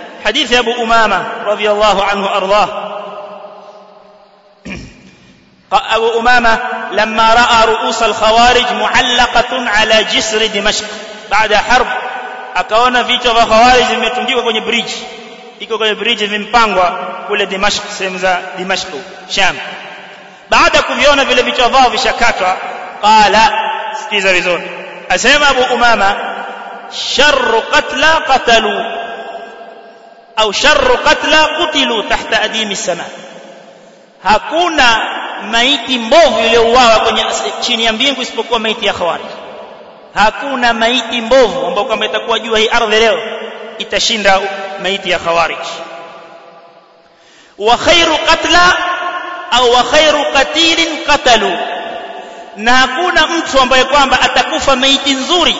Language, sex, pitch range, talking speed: Swahili, male, 210-260 Hz, 95 wpm